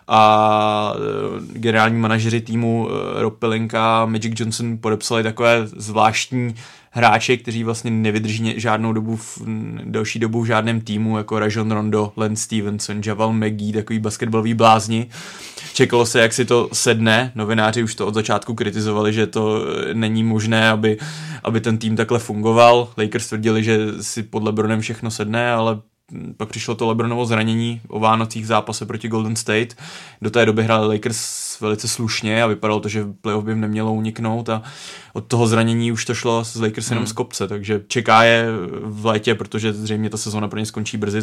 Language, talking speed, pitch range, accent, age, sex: Czech, 170 wpm, 110-115 Hz, native, 20-39, male